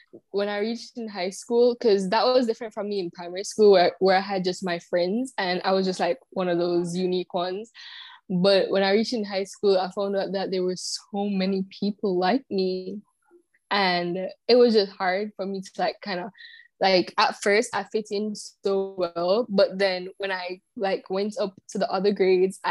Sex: female